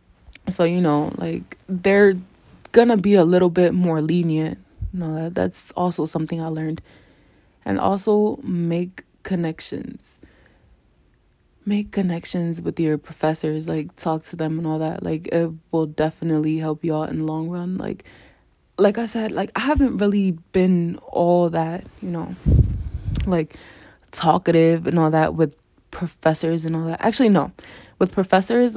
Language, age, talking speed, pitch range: English, 20-39, 155 wpm, 160-190 Hz